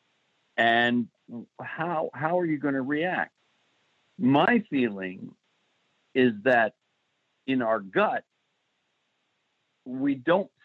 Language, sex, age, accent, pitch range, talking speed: English, male, 60-79, American, 110-150 Hz, 95 wpm